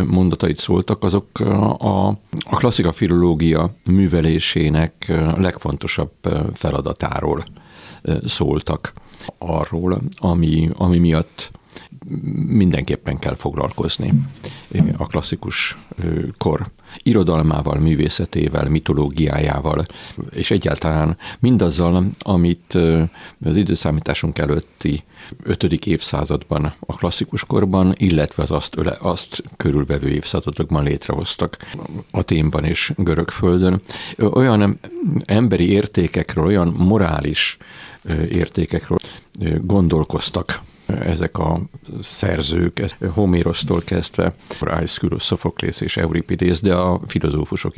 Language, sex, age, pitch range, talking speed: Hungarian, male, 50-69, 80-95 Hz, 80 wpm